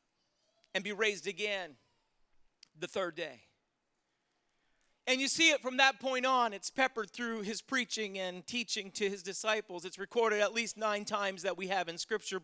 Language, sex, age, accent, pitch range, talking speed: English, male, 40-59, American, 195-235 Hz, 175 wpm